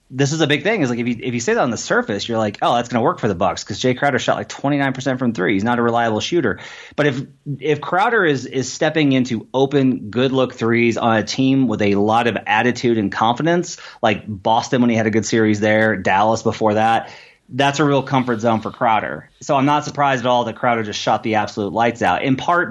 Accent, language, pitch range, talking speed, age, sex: American, English, 110-140 Hz, 250 wpm, 30-49, male